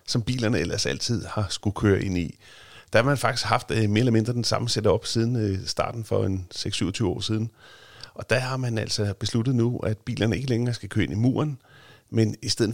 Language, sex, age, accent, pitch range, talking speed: Danish, male, 40-59, native, 105-120 Hz, 230 wpm